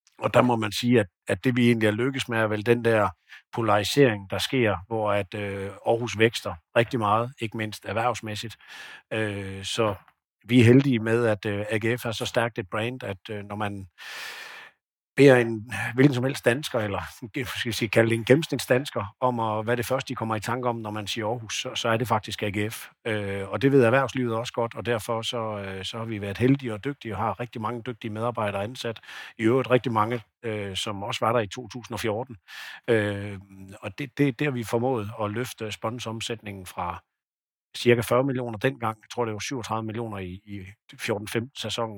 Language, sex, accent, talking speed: Danish, male, native, 190 wpm